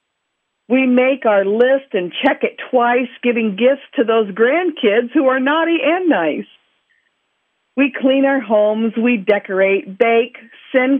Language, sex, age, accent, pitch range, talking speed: English, female, 50-69, American, 205-260 Hz, 140 wpm